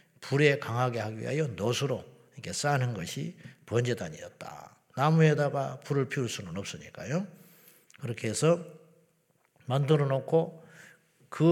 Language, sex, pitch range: Korean, male, 125-165 Hz